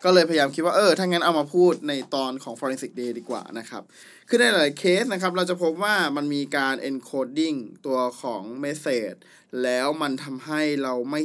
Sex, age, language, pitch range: male, 20-39, Thai, 140-175 Hz